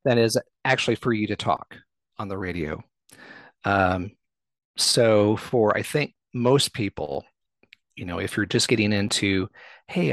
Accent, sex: American, male